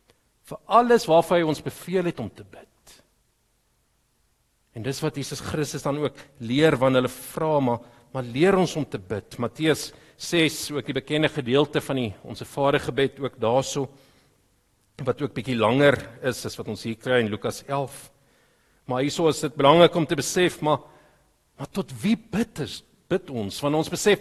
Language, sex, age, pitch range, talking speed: English, male, 50-69, 130-175 Hz, 180 wpm